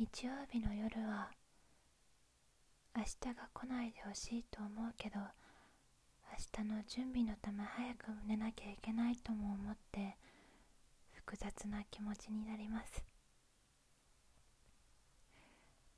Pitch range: 215-240 Hz